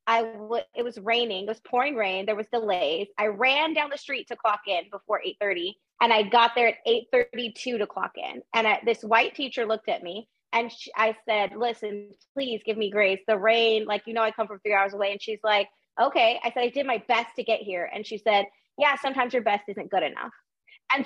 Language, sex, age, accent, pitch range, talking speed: English, female, 20-39, American, 215-255 Hz, 240 wpm